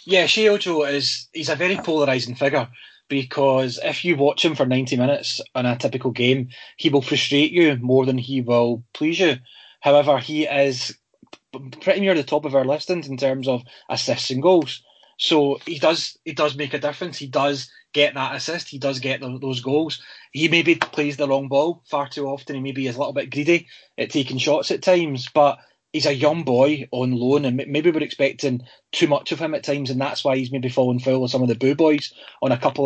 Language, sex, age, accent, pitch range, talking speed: English, male, 20-39, British, 125-150 Hz, 215 wpm